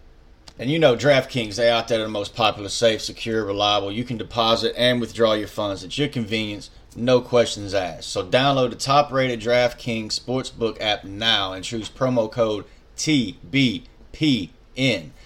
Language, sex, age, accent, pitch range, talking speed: English, male, 30-49, American, 110-130 Hz, 160 wpm